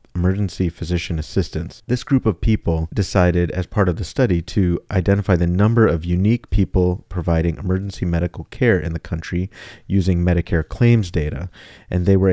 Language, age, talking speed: English, 40-59, 165 wpm